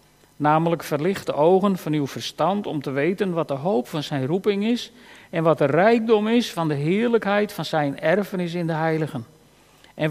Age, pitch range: 50-69, 150-195 Hz